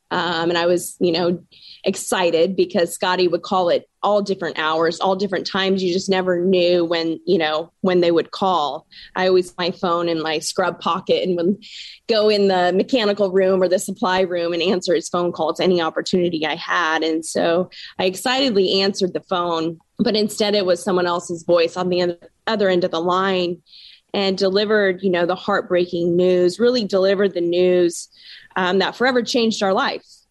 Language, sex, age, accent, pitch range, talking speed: English, female, 20-39, American, 175-195 Hz, 190 wpm